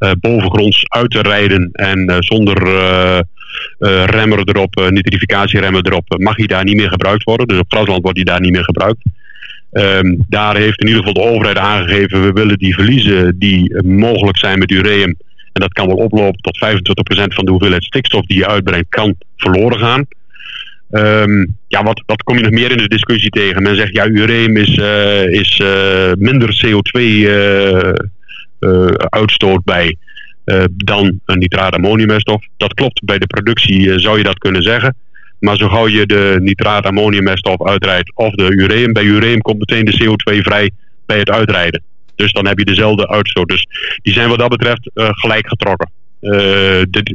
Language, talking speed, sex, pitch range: Dutch, 190 wpm, male, 95-110 Hz